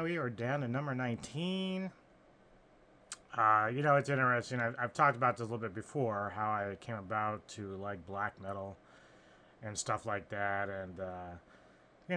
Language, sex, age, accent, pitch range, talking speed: English, male, 30-49, American, 95-115 Hz, 175 wpm